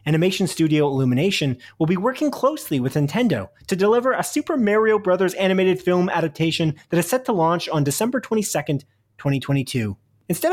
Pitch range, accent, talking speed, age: 135-190 Hz, American, 160 wpm, 30-49